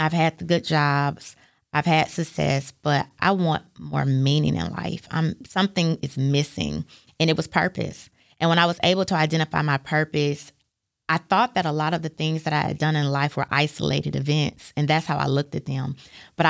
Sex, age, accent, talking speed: female, 20-39, American, 205 wpm